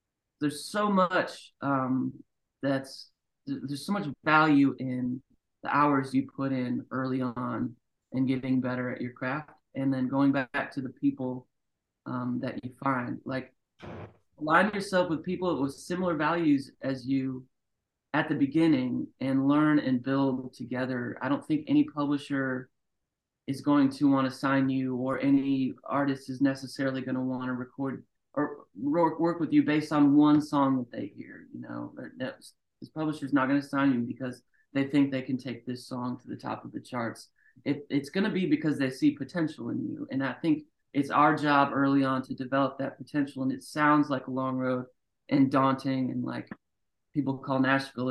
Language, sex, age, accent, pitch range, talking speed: English, male, 30-49, American, 130-145 Hz, 180 wpm